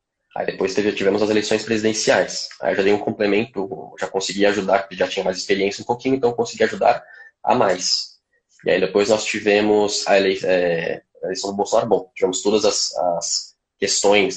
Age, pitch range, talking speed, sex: 10-29, 100-120 Hz, 170 wpm, male